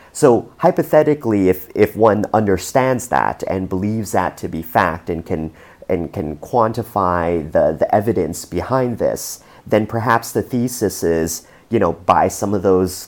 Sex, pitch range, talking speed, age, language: male, 90-115 Hz, 155 wpm, 30-49, English